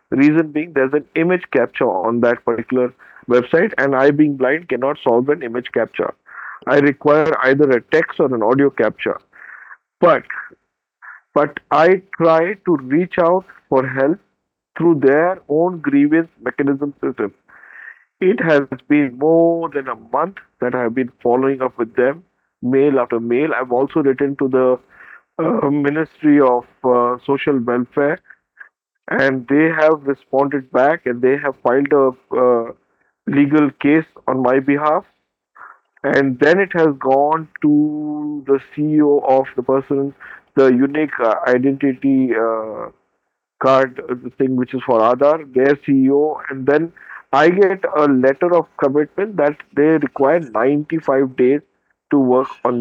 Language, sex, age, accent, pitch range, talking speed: English, male, 50-69, Indian, 130-150 Hz, 145 wpm